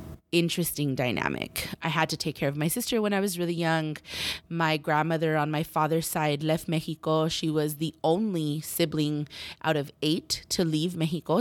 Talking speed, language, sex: 180 wpm, English, female